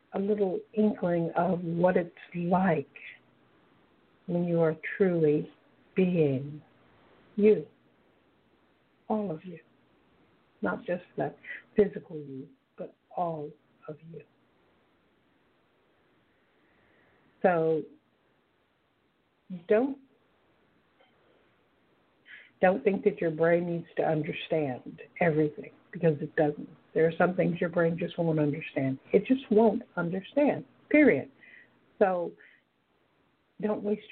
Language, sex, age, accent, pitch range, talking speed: English, female, 60-79, American, 160-200 Hz, 100 wpm